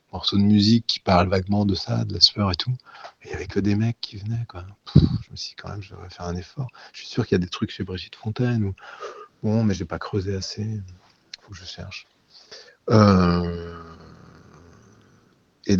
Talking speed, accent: 215 wpm, French